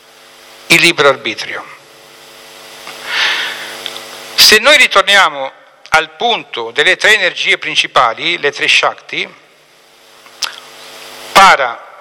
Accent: native